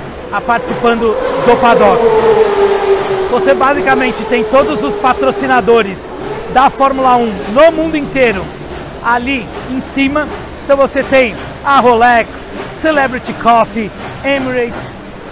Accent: Brazilian